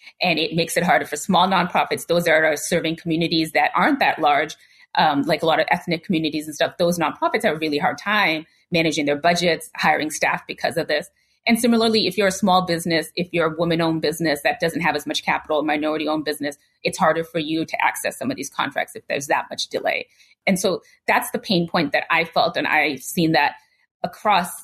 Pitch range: 160-195 Hz